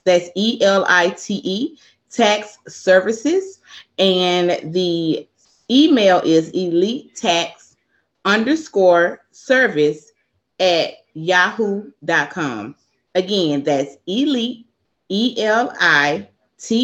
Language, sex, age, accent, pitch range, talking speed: English, female, 30-49, American, 170-240 Hz, 90 wpm